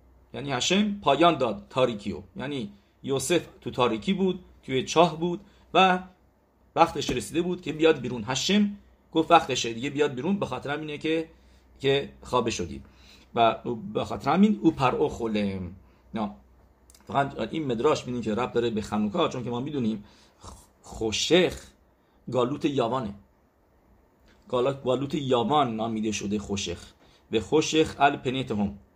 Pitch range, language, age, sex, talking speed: 100-140 Hz, English, 50-69, male, 135 wpm